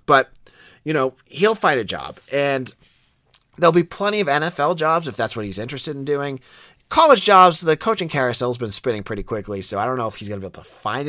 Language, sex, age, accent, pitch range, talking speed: English, male, 30-49, American, 110-160 Hz, 235 wpm